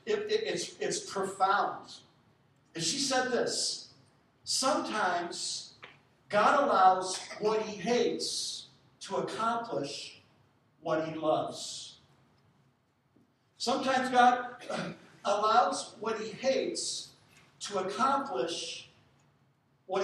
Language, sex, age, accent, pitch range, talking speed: English, male, 60-79, American, 150-240 Hz, 85 wpm